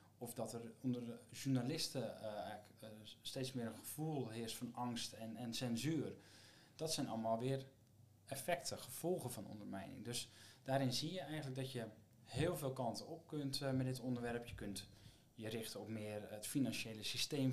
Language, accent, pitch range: Dutch, Dutch, 110-130 Hz